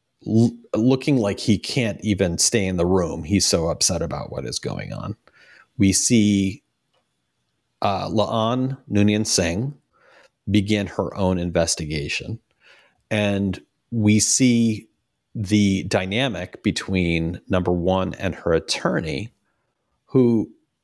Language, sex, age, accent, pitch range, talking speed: English, male, 40-59, American, 95-115 Hz, 110 wpm